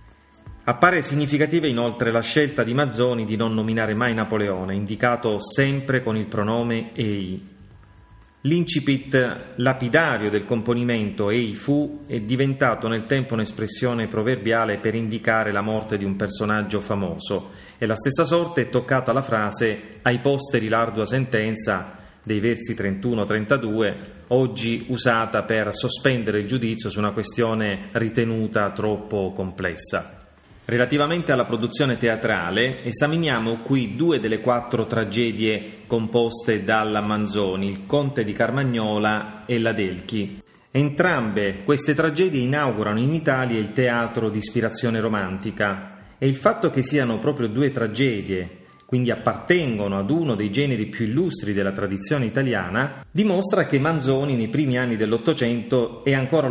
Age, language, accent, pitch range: 30-49, Italian, native, 105-130 Hz